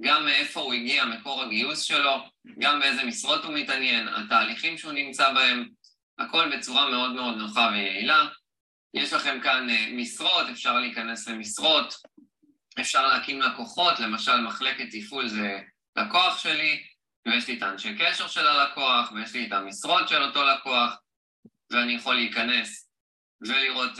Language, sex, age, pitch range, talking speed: Hebrew, male, 20-39, 110-150 Hz, 140 wpm